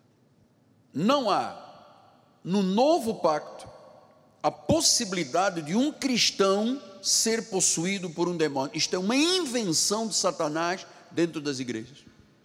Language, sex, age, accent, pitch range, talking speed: Portuguese, male, 60-79, Brazilian, 165-230 Hz, 115 wpm